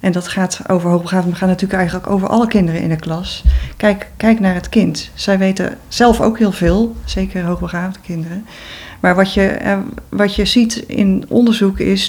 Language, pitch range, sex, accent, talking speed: English, 175-210 Hz, female, Dutch, 190 wpm